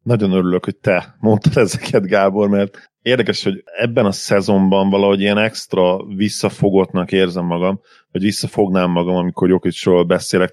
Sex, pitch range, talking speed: male, 85-100 Hz, 140 wpm